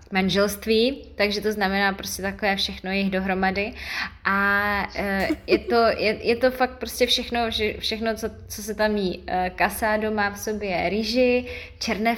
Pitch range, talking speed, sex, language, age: 180-215 Hz, 150 wpm, female, Slovak, 20-39